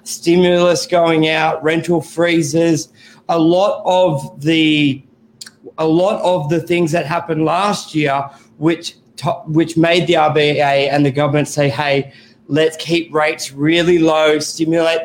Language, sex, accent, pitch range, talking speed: English, male, Australian, 145-170 Hz, 140 wpm